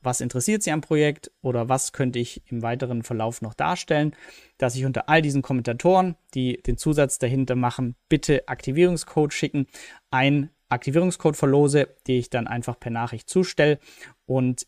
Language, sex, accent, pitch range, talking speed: German, male, German, 120-150 Hz, 160 wpm